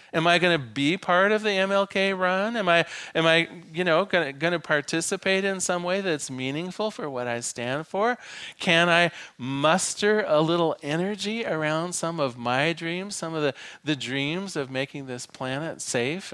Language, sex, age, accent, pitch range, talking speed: English, male, 40-59, American, 130-185 Hz, 190 wpm